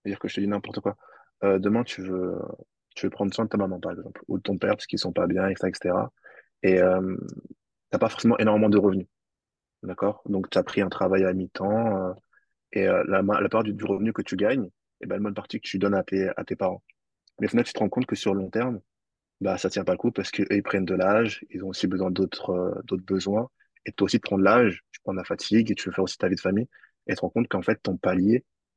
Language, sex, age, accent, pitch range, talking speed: French, male, 20-39, French, 95-105 Hz, 275 wpm